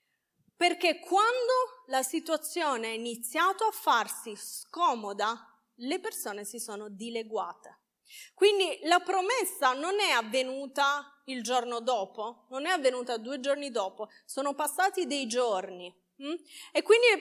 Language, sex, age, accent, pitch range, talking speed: Italian, female, 30-49, native, 245-345 Hz, 125 wpm